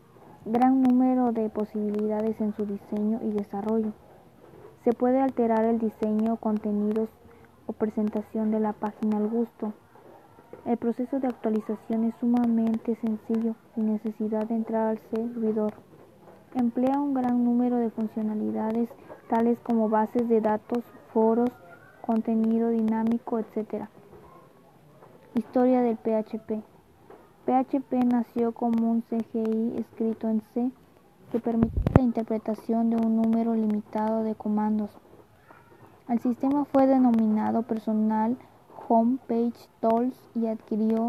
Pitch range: 220-235 Hz